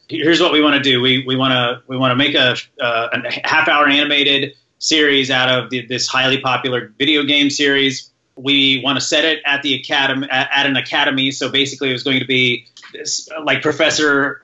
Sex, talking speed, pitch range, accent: male, 210 wpm, 130-155 Hz, American